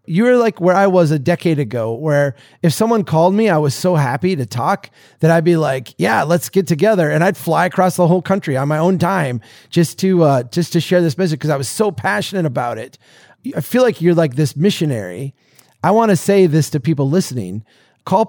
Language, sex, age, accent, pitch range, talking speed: English, male, 30-49, American, 130-175 Hz, 225 wpm